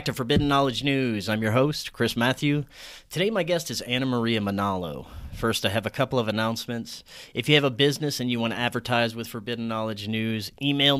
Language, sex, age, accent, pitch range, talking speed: English, male, 30-49, American, 105-135 Hz, 215 wpm